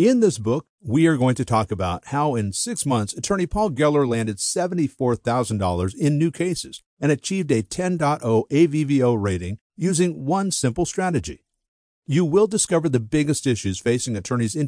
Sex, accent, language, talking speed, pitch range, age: male, American, English, 165 wpm, 115-165 Hz, 50-69